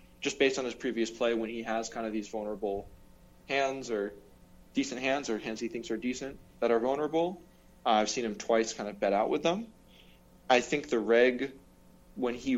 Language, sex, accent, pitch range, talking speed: English, male, American, 110-135 Hz, 205 wpm